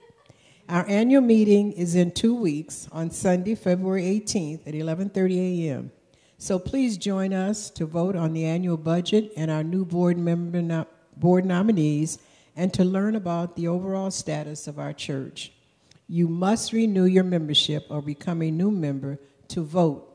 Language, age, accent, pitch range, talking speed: English, 60-79, American, 150-190 Hz, 160 wpm